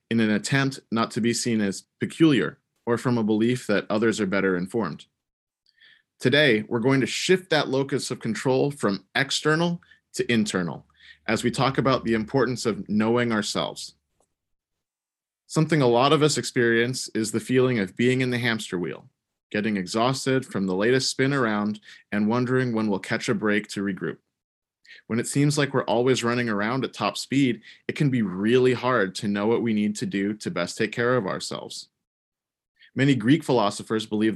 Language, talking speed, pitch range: English, 180 wpm, 105-130 Hz